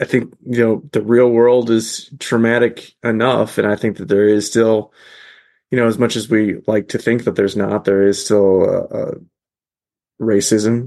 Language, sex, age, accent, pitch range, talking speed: English, male, 20-39, American, 105-115 Hz, 195 wpm